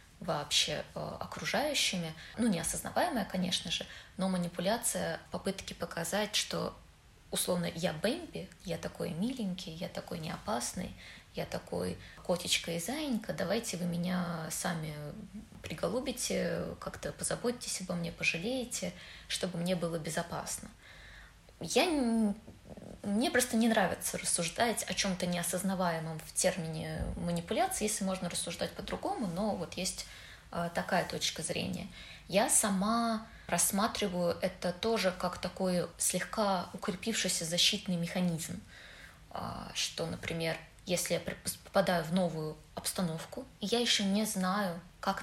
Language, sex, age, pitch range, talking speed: Russian, female, 20-39, 175-210 Hz, 115 wpm